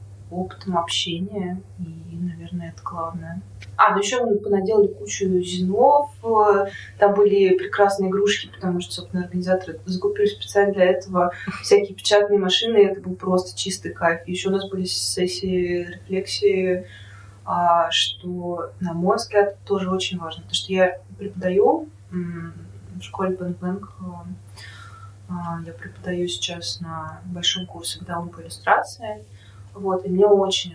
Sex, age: female, 20-39